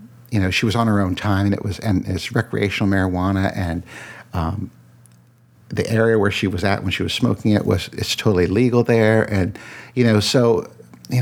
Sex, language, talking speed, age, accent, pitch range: male, English, 205 wpm, 60-79, American, 100-120 Hz